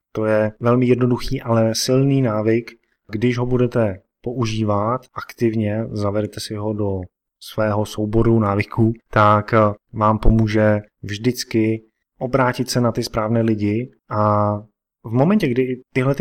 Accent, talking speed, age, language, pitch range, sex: native, 125 wpm, 20-39, Czech, 110-130 Hz, male